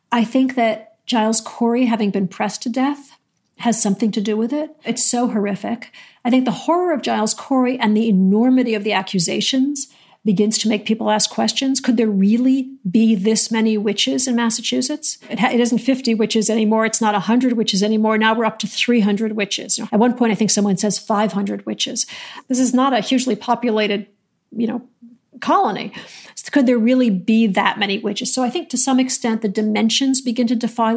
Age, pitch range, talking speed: 50-69, 215-250 Hz, 195 wpm